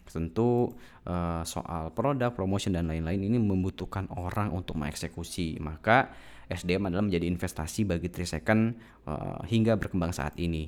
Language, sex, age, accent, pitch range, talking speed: Indonesian, male, 20-39, native, 85-110 Hz, 130 wpm